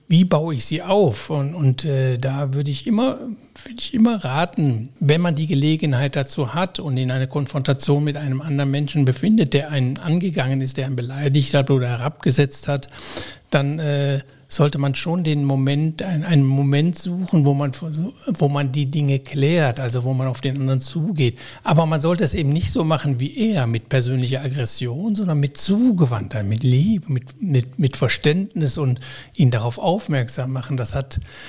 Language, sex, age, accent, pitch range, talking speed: German, male, 60-79, German, 130-160 Hz, 175 wpm